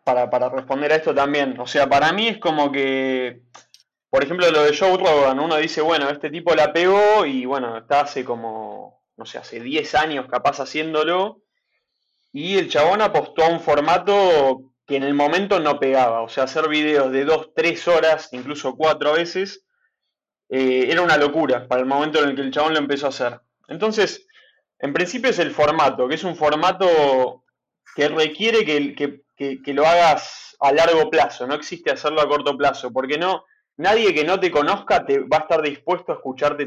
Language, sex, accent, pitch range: Spanish, male, Argentinian, 140-190 Hz